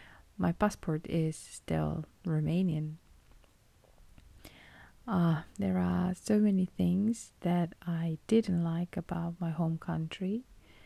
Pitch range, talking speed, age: 155-180 Hz, 105 wpm, 20-39